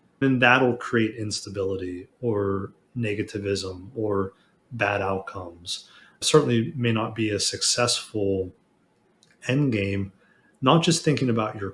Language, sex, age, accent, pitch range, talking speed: English, male, 30-49, American, 100-125 Hz, 110 wpm